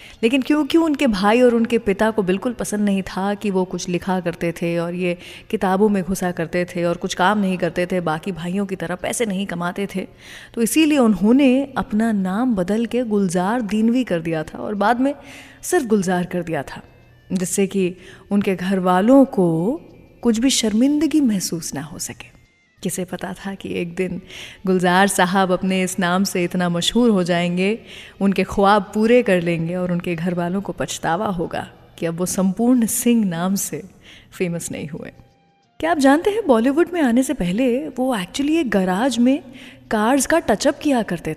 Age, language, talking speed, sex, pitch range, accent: 30-49, English, 170 wpm, female, 180-235 Hz, Indian